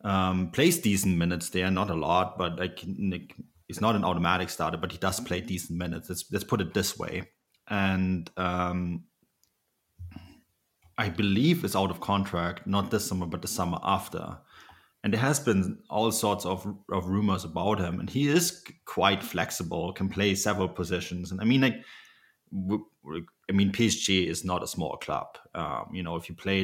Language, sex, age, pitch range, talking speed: English, male, 30-49, 90-100 Hz, 180 wpm